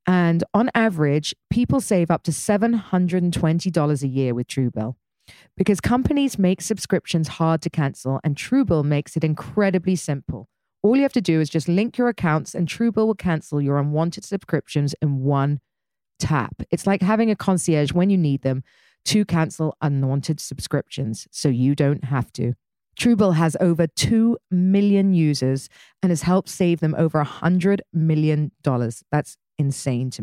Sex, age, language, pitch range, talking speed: female, 40-59, English, 145-195 Hz, 165 wpm